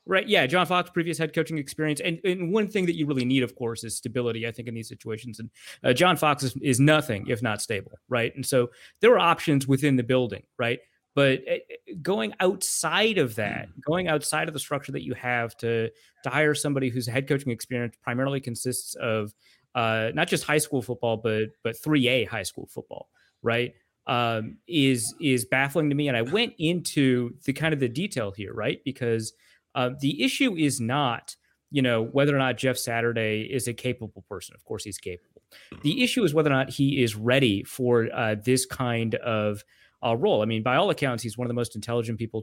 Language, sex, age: English, male, 30-49